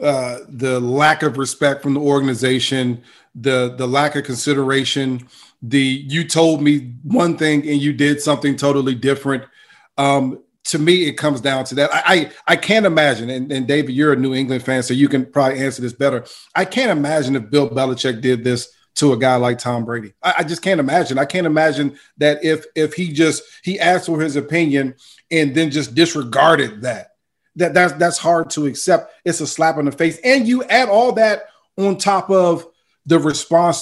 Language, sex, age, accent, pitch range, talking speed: English, male, 40-59, American, 135-170 Hz, 200 wpm